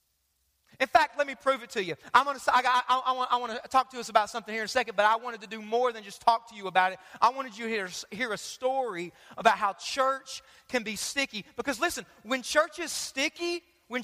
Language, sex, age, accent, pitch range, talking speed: English, male, 30-49, American, 170-265 Hz, 250 wpm